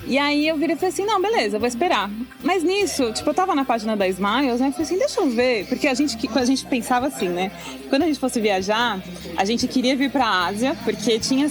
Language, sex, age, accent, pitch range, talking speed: Portuguese, female, 20-39, Brazilian, 215-270 Hz, 265 wpm